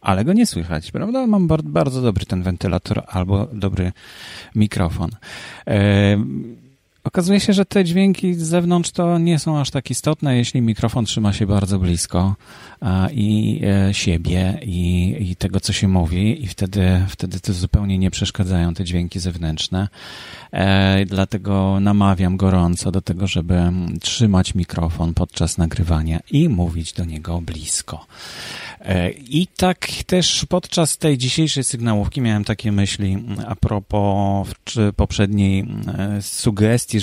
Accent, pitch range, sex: native, 95-120 Hz, male